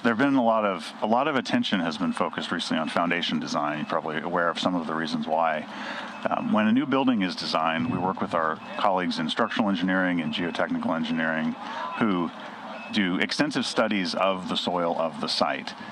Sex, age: male, 40-59